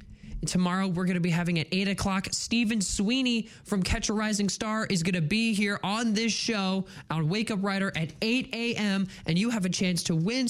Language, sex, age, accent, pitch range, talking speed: English, male, 20-39, American, 145-215 Hz, 215 wpm